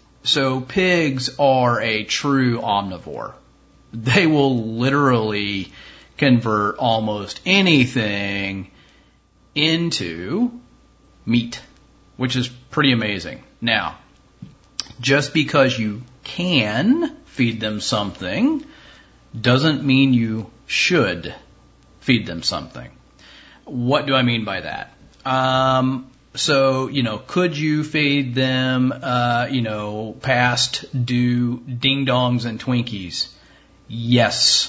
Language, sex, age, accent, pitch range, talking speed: English, male, 40-59, American, 110-135 Hz, 95 wpm